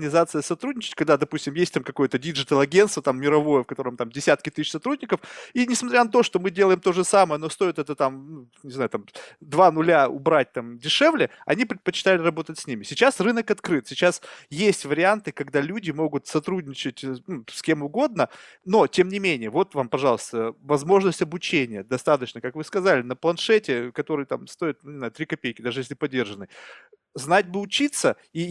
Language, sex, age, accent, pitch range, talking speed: Russian, male, 30-49, native, 145-190 Hz, 180 wpm